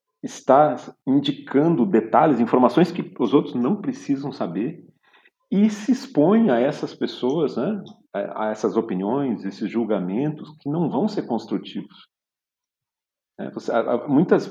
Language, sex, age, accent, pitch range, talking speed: Portuguese, male, 50-69, Brazilian, 105-150 Hz, 115 wpm